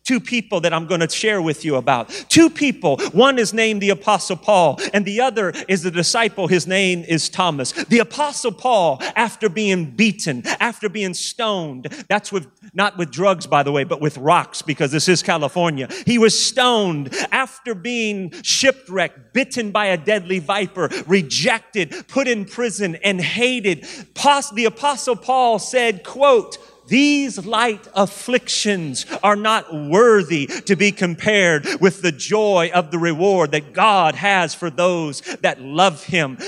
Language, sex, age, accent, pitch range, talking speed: English, male, 40-59, American, 175-230 Hz, 160 wpm